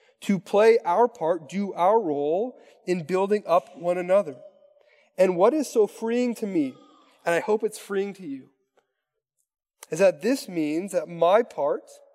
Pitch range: 180-250 Hz